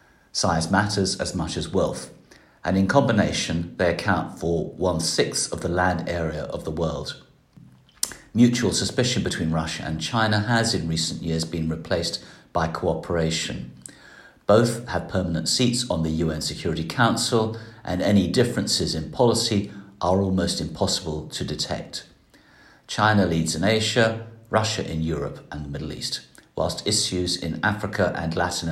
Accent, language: British, English